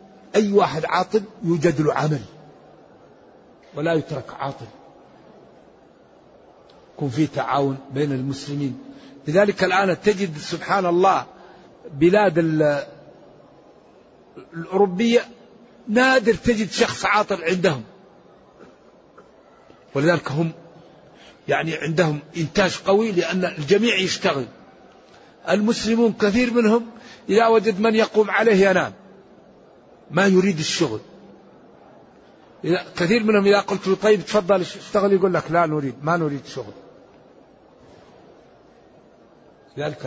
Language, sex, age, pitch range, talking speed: Arabic, male, 60-79, 160-215 Hz, 95 wpm